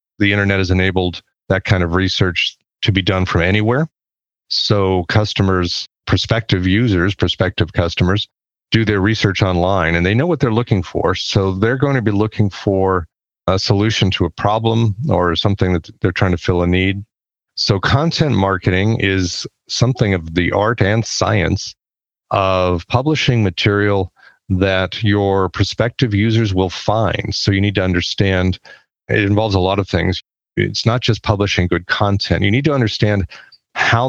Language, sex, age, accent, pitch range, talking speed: English, male, 40-59, American, 95-110 Hz, 160 wpm